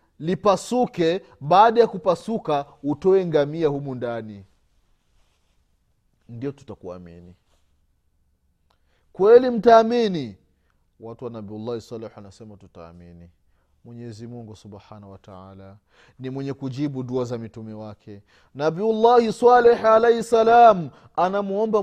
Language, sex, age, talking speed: Swahili, male, 30-49, 95 wpm